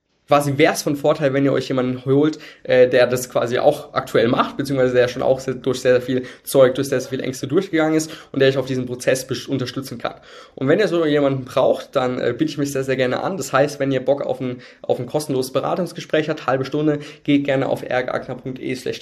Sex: male